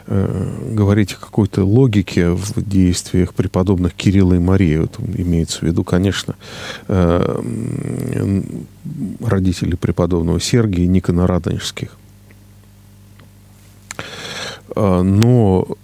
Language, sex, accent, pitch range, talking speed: Russian, male, native, 95-110 Hz, 75 wpm